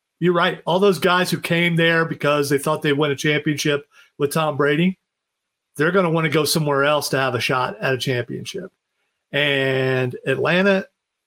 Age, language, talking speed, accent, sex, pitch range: 40-59, English, 185 wpm, American, male, 145-190 Hz